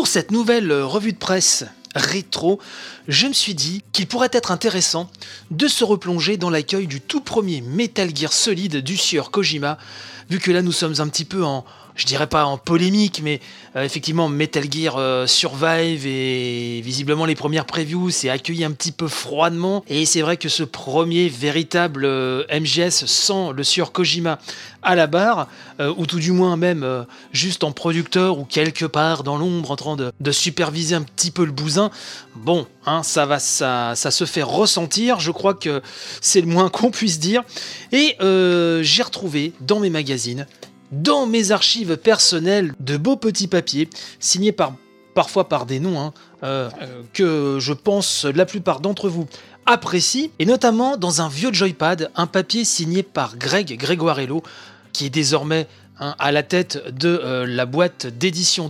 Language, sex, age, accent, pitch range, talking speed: French, male, 30-49, French, 145-185 Hz, 180 wpm